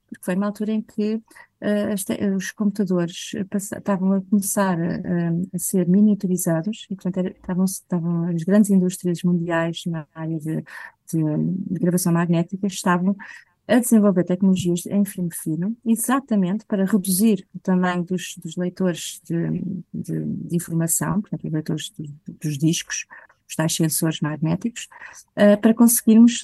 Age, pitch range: 30-49, 170-210 Hz